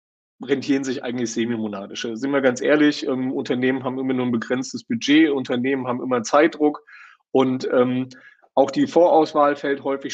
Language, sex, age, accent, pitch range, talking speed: German, male, 30-49, German, 120-140 Hz, 160 wpm